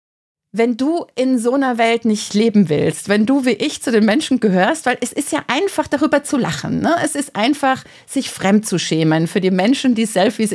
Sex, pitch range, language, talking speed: female, 190-240 Hz, German, 215 wpm